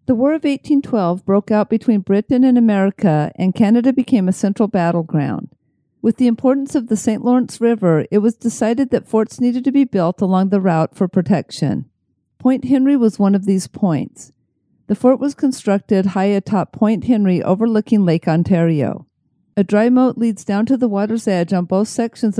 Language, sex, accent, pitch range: English, female, American, 185-235 Hz